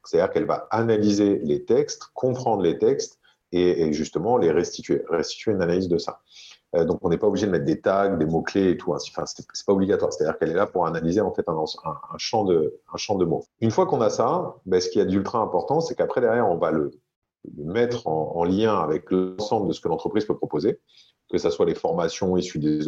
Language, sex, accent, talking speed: French, male, French, 230 wpm